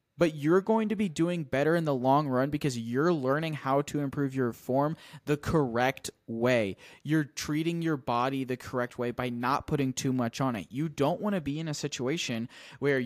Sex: male